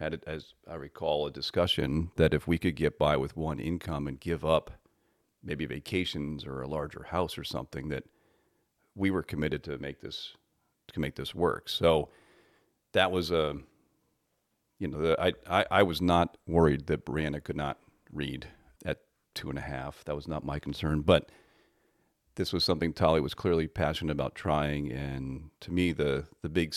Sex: male